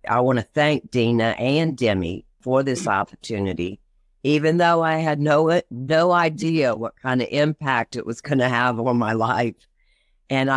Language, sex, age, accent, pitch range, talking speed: English, female, 50-69, American, 115-150 Hz, 170 wpm